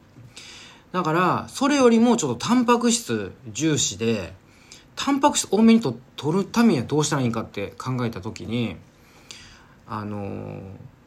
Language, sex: Japanese, male